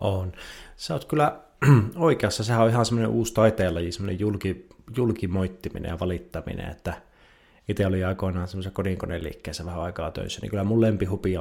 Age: 30-49